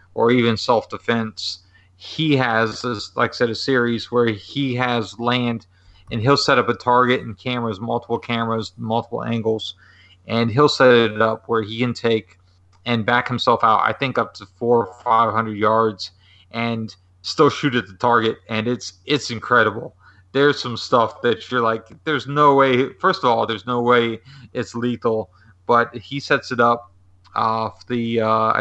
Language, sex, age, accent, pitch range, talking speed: English, male, 30-49, American, 110-125 Hz, 175 wpm